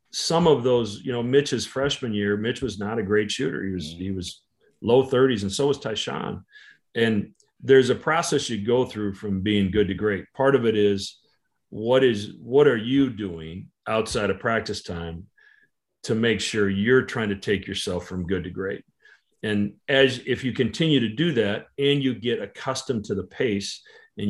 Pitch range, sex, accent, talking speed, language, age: 100-130 Hz, male, American, 195 wpm, English, 40-59